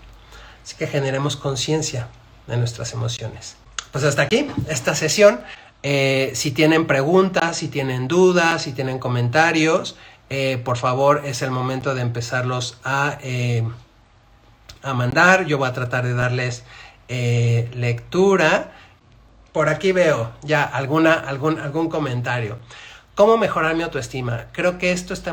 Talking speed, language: 130 wpm, Spanish